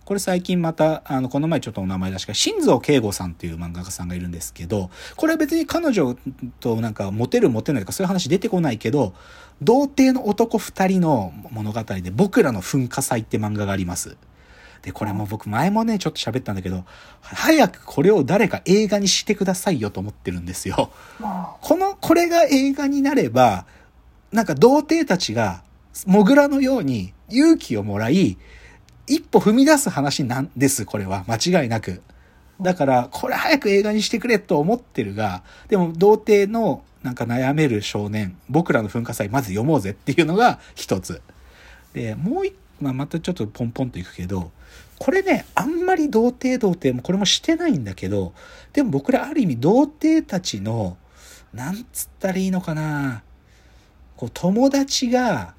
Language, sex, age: Japanese, male, 40-59